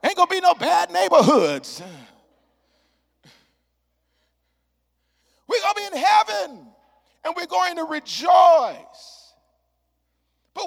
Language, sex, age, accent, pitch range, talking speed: English, male, 40-59, American, 230-325 Hz, 105 wpm